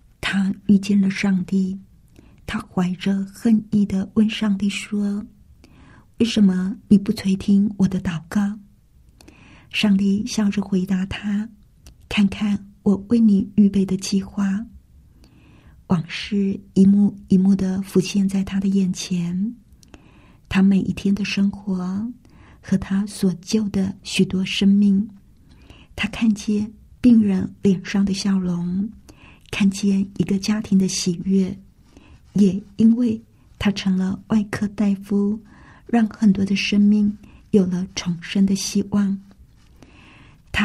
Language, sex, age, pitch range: Chinese, female, 50-69, 190-210 Hz